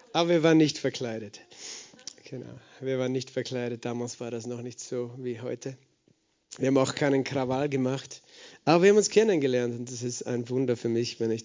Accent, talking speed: German, 200 wpm